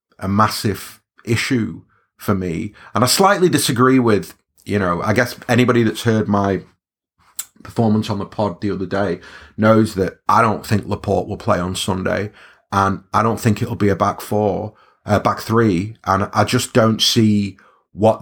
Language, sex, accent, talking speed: English, male, British, 175 wpm